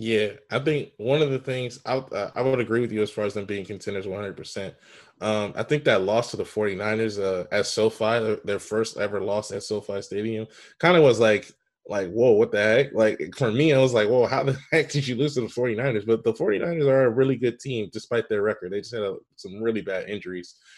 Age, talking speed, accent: 20-39, 235 wpm, American